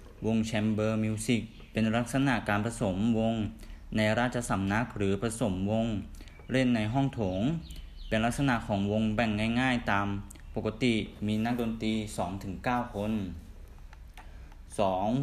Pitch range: 95-115 Hz